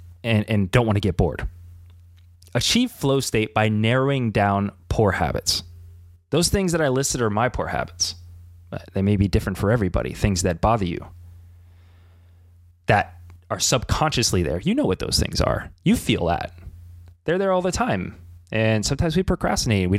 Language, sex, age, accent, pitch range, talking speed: English, male, 20-39, American, 85-120 Hz, 170 wpm